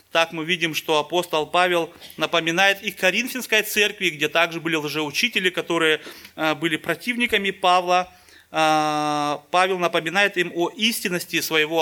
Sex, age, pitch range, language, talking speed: male, 30-49, 150-190 Hz, Russian, 120 wpm